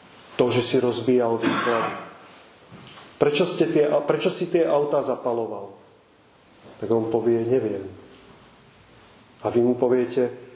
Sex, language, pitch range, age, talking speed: male, Czech, 125-155 Hz, 30-49, 110 wpm